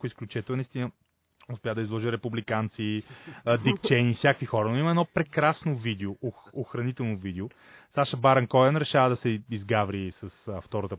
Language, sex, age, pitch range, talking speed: Bulgarian, male, 30-49, 105-140 Hz, 140 wpm